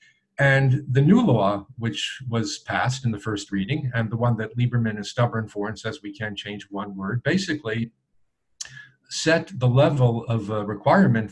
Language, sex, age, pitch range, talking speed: English, male, 50-69, 110-130 Hz, 170 wpm